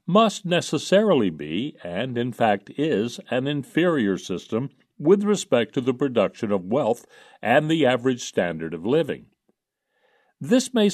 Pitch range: 100-150 Hz